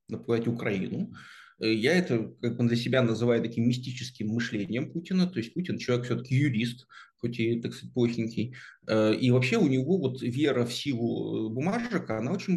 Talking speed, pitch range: 165 wpm, 115-150 Hz